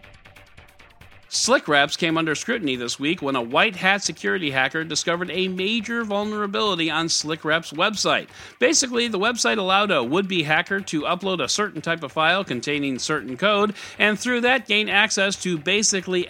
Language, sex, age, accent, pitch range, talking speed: English, male, 40-59, American, 150-205 Hz, 155 wpm